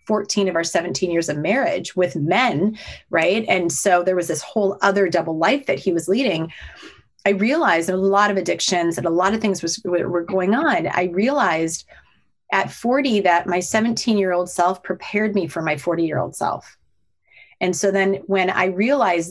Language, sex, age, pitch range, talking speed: English, female, 30-49, 170-200 Hz, 180 wpm